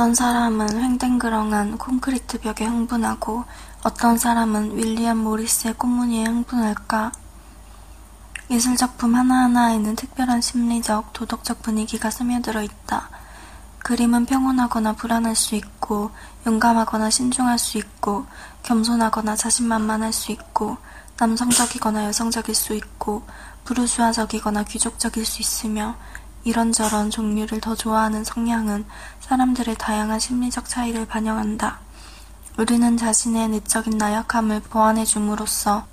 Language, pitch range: Korean, 215-235 Hz